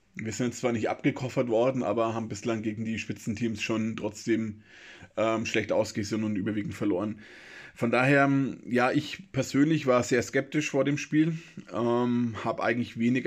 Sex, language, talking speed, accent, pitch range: male, German, 160 wpm, German, 110-135 Hz